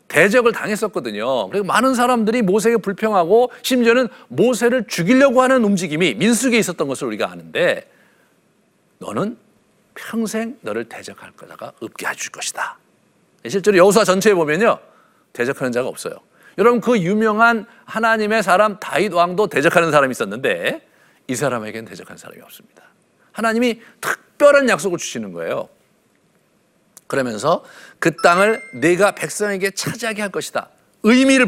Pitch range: 185-235 Hz